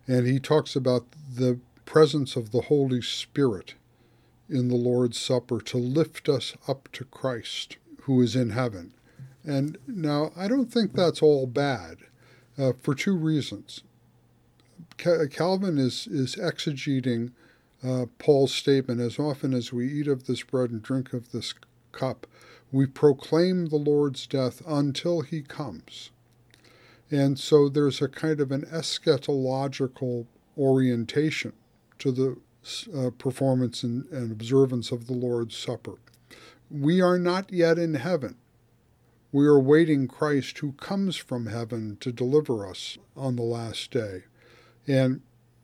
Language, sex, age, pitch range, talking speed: English, male, 50-69, 120-150 Hz, 140 wpm